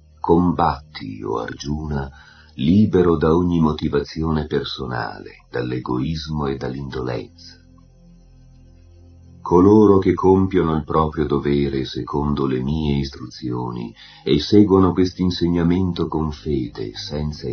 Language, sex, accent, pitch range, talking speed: Italian, male, native, 70-90 Hz, 95 wpm